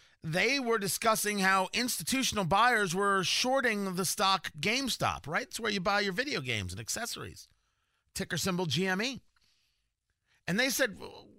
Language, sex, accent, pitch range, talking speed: English, male, American, 165-245 Hz, 150 wpm